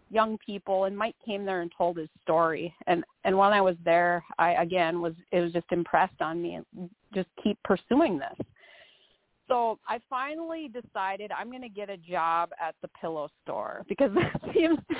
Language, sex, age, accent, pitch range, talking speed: English, female, 40-59, American, 175-240 Hz, 190 wpm